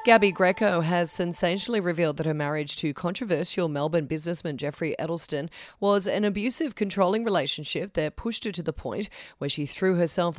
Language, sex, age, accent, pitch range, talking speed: English, female, 30-49, Australian, 160-200 Hz, 170 wpm